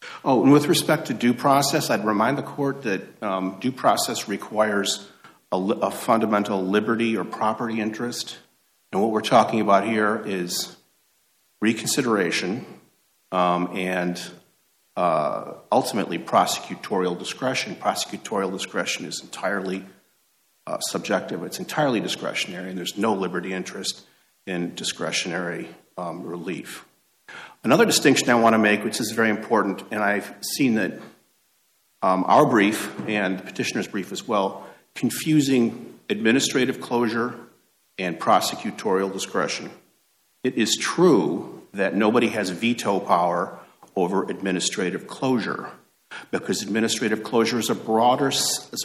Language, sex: English, male